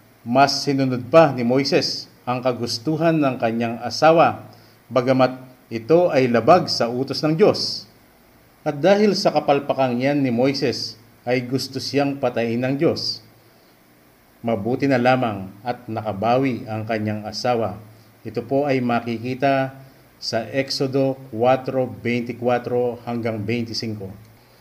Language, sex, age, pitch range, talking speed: English, male, 50-69, 115-135 Hz, 115 wpm